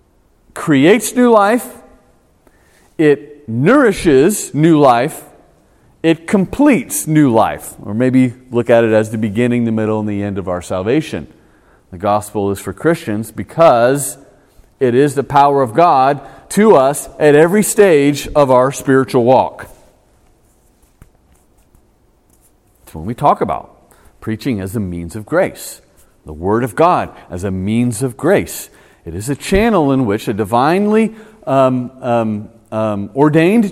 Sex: male